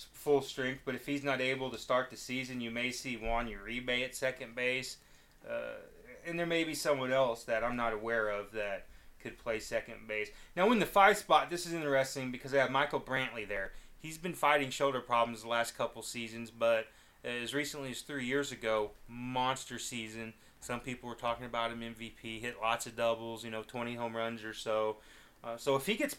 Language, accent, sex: English, American, male